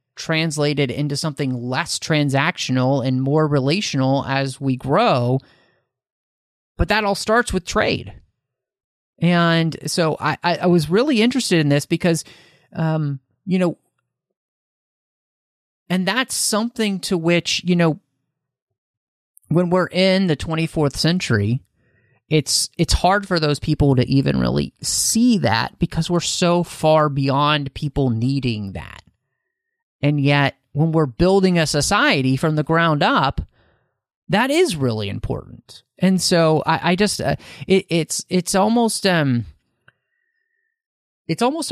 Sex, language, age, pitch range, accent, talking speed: male, English, 30-49, 125-175 Hz, American, 130 wpm